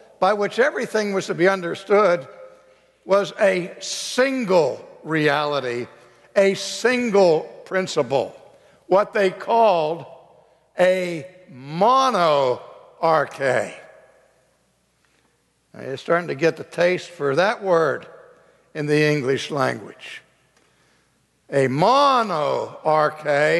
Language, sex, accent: English, male, American